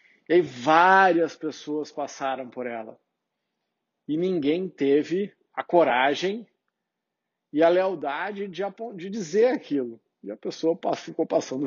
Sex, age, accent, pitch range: male, 50-69, Brazilian, 140-200 Hz